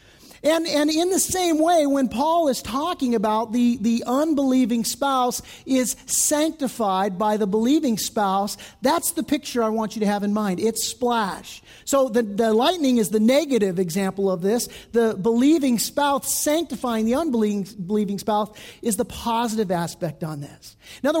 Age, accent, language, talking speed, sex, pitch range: 50-69, American, English, 165 wpm, male, 205-275 Hz